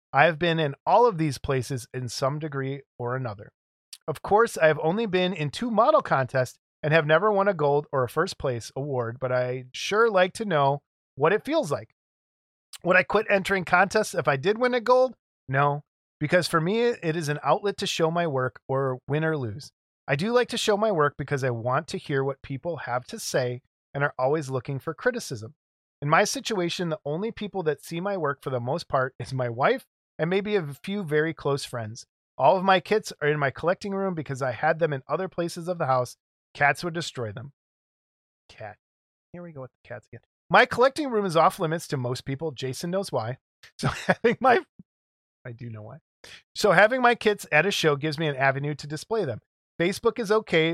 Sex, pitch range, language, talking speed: male, 135-195 Hz, English, 220 wpm